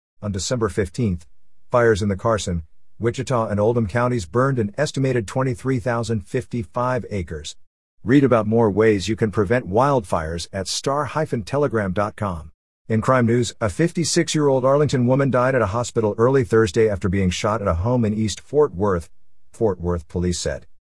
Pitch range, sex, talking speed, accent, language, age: 95-130 Hz, male, 160 wpm, American, English, 50-69